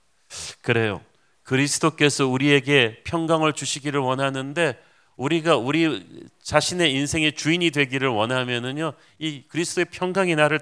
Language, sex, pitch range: Korean, male, 125-150 Hz